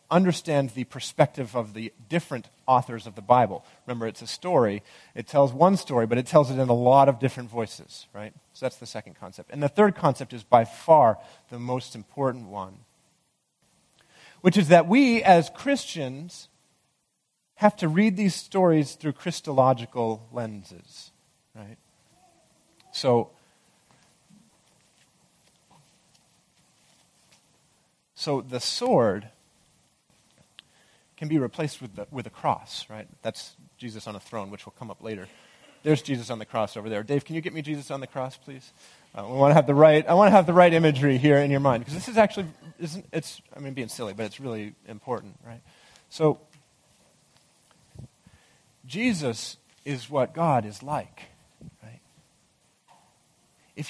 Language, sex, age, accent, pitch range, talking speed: English, male, 40-59, American, 120-165 Hz, 155 wpm